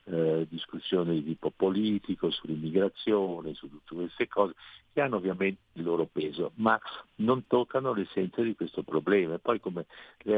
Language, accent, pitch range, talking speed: Italian, native, 85-120 Hz, 155 wpm